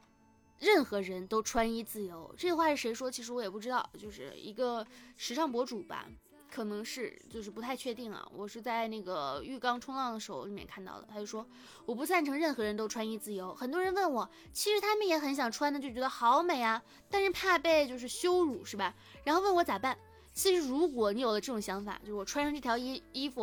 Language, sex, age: Chinese, female, 20-39